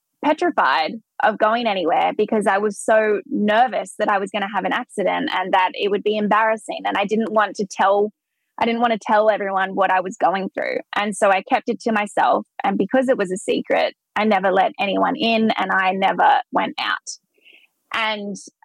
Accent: Australian